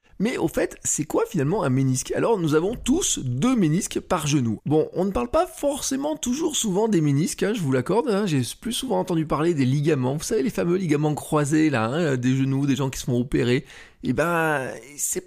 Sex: male